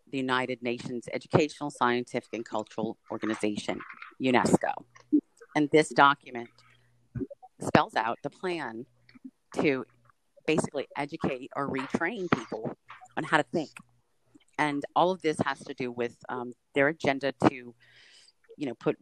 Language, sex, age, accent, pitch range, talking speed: English, female, 40-59, American, 125-155 Hz, 130 wpm